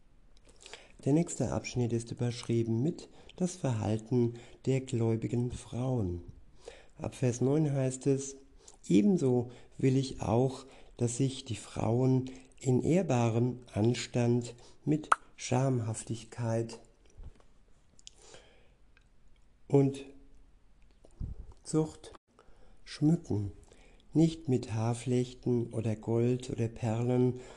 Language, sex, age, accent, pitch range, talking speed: German, male, 60-79, German, 115-135 Hz, 85 wpm